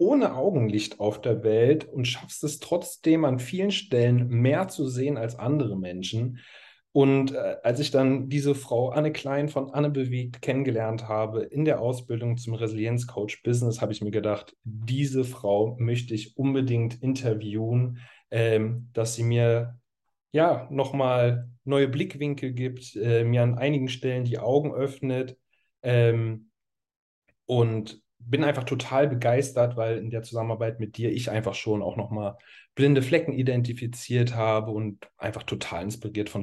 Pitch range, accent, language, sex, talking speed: 105-130 Hz, German, German, male, 150 wpm